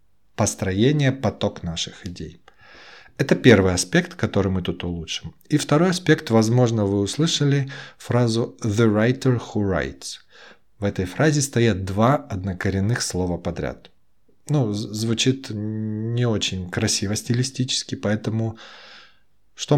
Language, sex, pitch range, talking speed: Russian, male, 90-125 Hz, 115 wpm